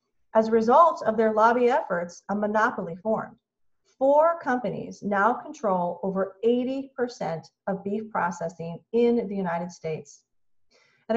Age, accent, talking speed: 40-59, American, 130 wpm